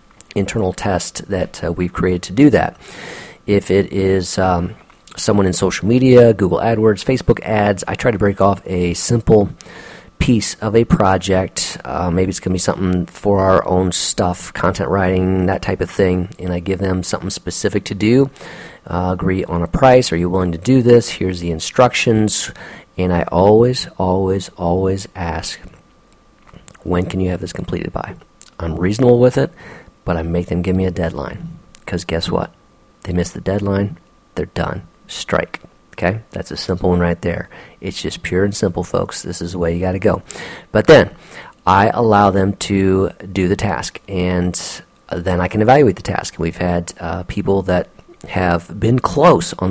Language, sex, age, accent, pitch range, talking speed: English, male, 40-59, American, 90-100 Hz, 185 wpm